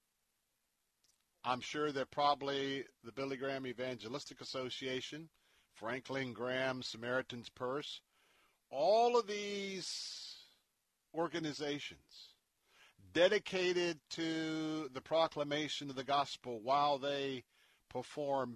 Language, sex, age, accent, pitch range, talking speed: English, male, 50-69, American, 130-160 Hz, 85 wpm